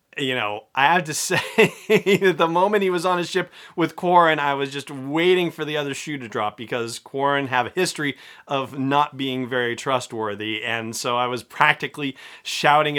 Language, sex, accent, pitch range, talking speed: English, male, American, 120-160 Hz, 195 wpm